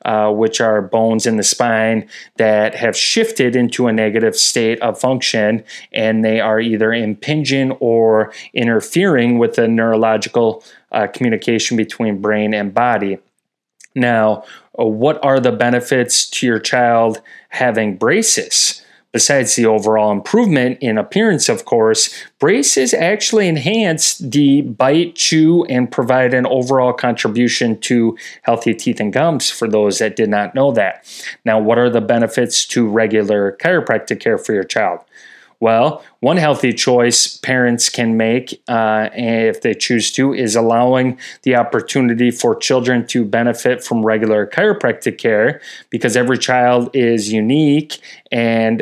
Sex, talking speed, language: male, 140 wpm, English